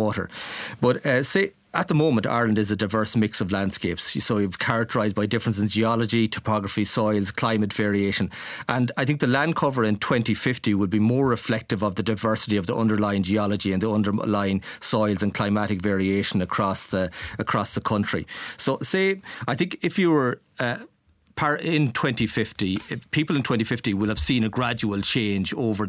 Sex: male